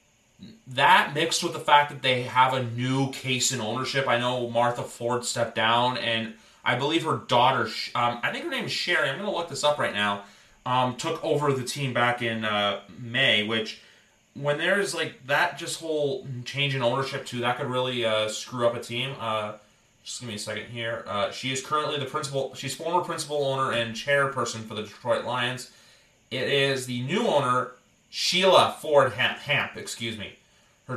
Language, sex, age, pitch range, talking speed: English, male, 30-49, 115-150 Hz, 195 wpm